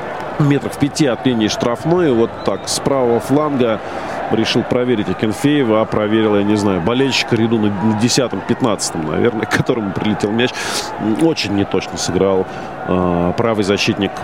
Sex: male